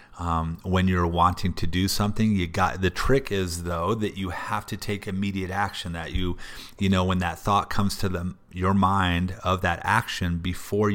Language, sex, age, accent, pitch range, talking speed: English, male, 30-49, American, 85-100 Hz, 195 wpm